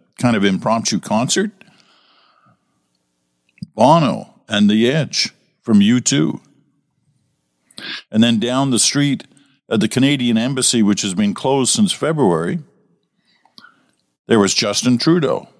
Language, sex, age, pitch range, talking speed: English, male, 50-69, 85-130 Hz, 110 wpm